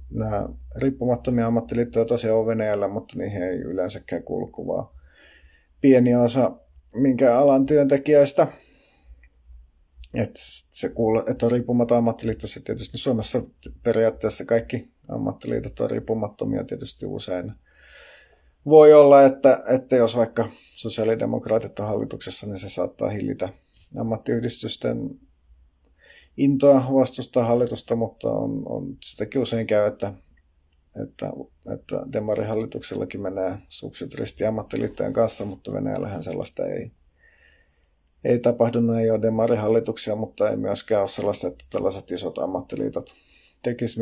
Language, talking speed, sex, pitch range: Finnish, 110 wpm, male, 90-125 Hz